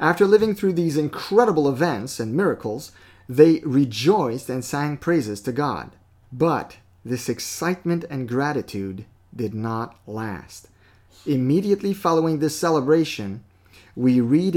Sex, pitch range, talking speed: male, 115-160 Hz, 120 wpm